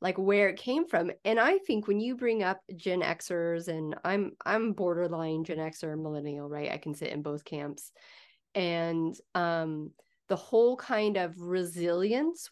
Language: English